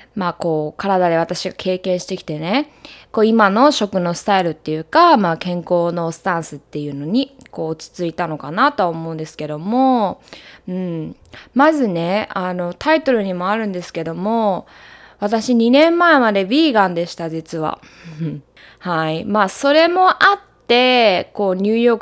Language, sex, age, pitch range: Japanese, female, 20-39, 175-240 Hz